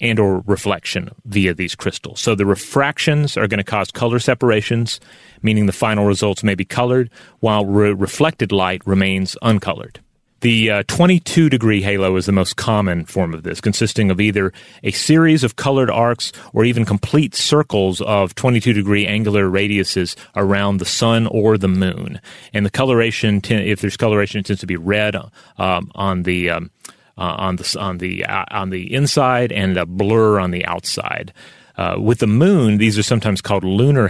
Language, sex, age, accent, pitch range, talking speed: English, male, 30-49, American, 100-120 Hz, 180 wpm